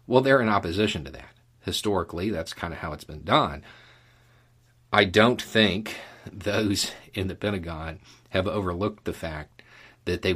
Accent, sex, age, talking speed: American, male, 40-59, 155 wpm